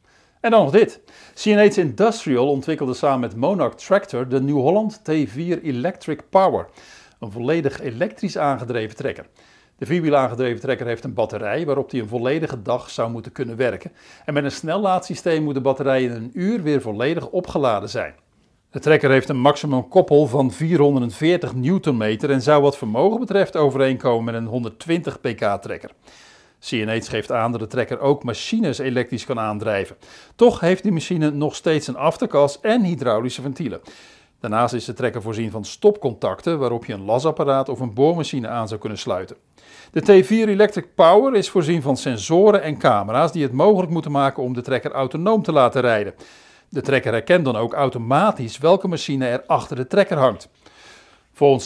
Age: 50-69